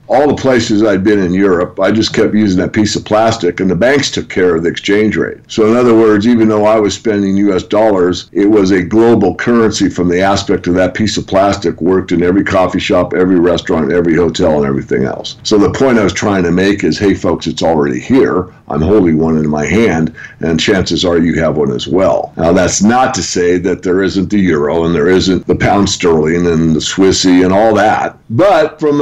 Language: English